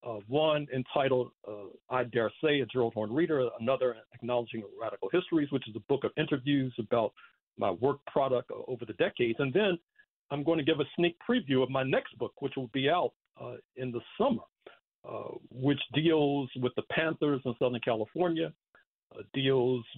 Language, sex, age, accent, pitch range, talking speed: English, male, 60-79, American, 120-150 Hz, 180 wpm